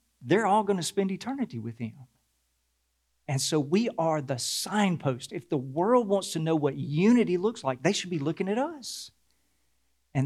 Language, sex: English, male